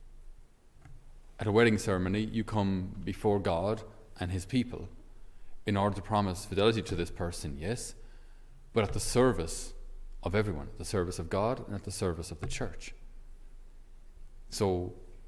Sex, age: male, 30-49